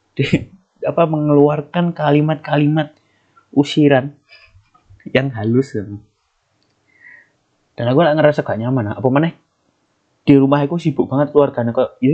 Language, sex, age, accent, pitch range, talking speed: Indonesian, male, 20-39, native, 120-160 Hz, 120 wpm